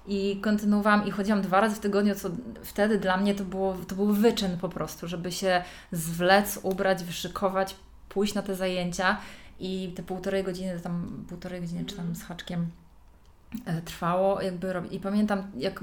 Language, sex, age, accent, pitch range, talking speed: Polish, female, 20-39, native, 190-215 Hz, 165 wpm